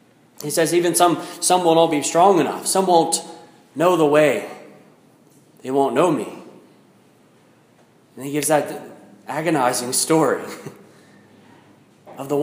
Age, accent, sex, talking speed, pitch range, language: 30-49, American, male, 130 wpm, 140-180 Hz, English